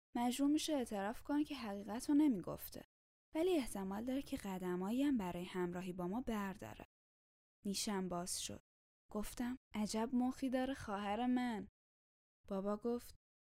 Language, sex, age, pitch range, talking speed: Persian, female, 10-29, 180-245 Hz, 135 wpm